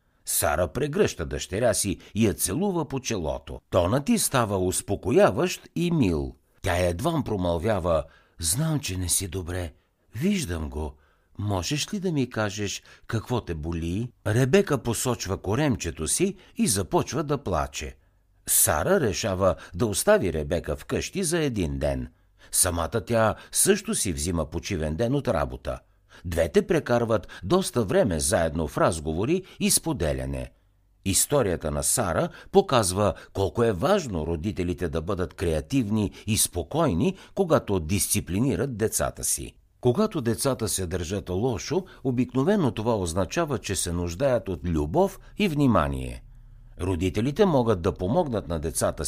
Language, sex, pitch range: Bulgarian, male, 85-135 Hz